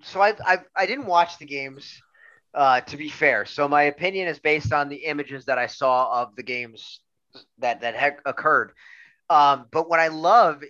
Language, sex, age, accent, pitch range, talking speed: English, male, 30-49, American, 130-165 Hz, 195 wpm